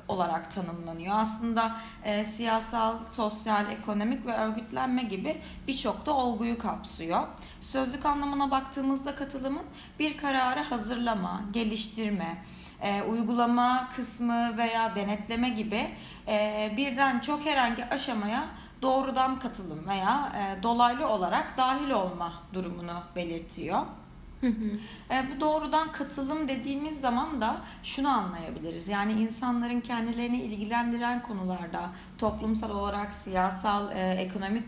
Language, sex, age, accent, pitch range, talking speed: Turkish, female, 30-49, native, 200-255 Hz, 100 wpm